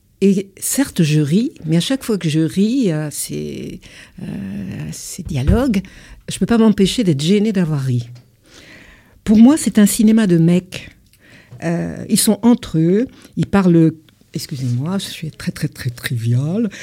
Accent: French